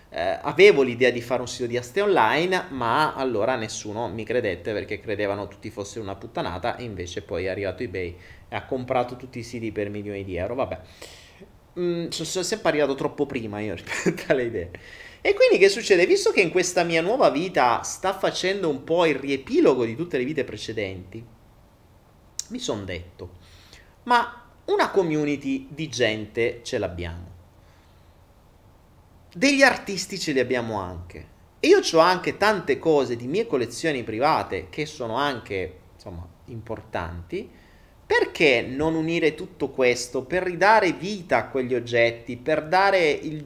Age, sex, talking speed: 30-49, male, 155 wpm